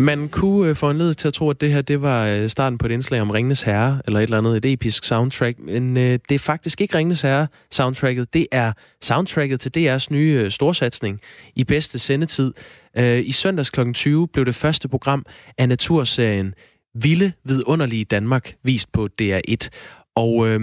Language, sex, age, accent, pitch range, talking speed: Danish, male, 20-39, native, 110-145 Hz, 170 wpm